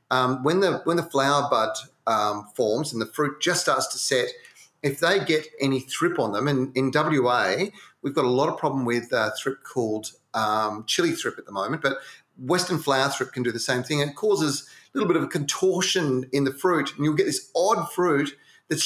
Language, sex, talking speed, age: English, male, 220 wpm, 30-49